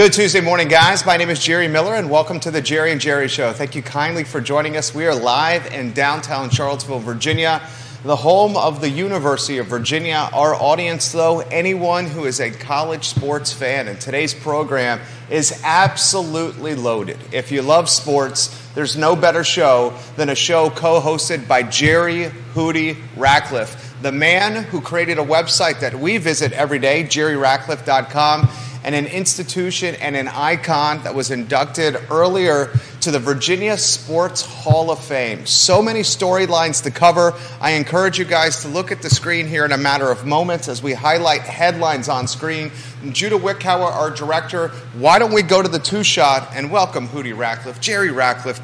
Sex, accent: male, American